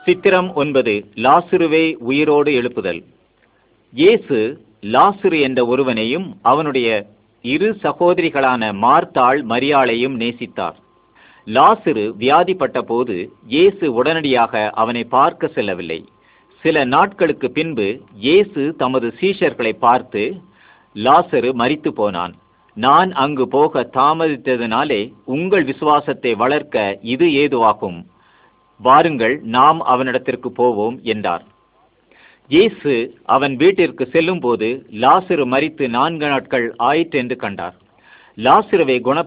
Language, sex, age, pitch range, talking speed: Malay, male, 50-69, 120-165 Hz, 115 wpm